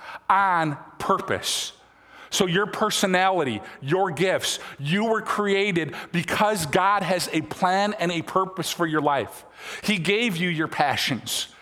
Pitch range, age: 170-210 Hz, 50-69